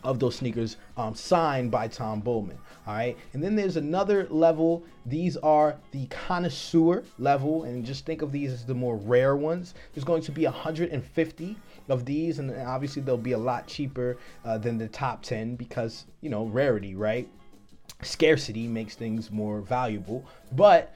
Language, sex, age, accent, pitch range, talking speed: English, male, 30-49, American, 120-160 Hz, 170 wpm